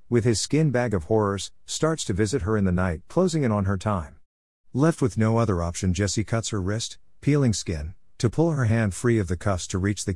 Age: 50-69